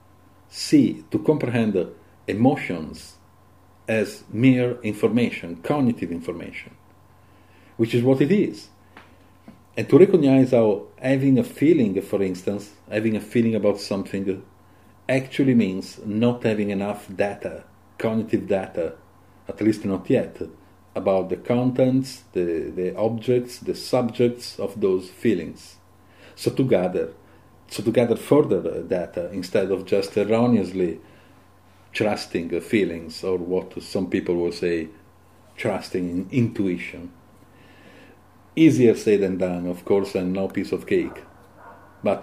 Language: English